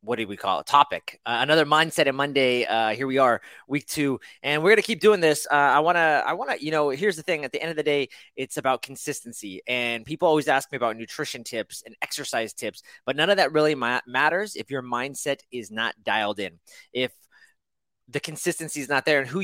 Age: 30-49